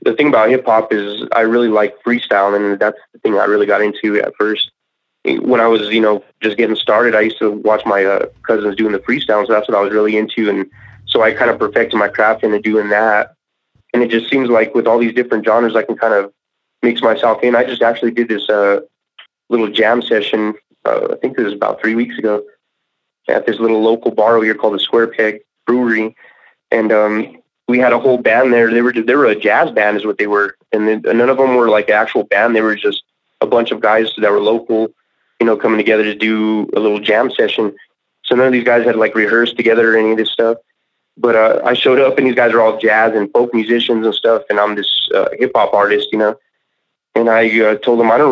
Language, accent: English, American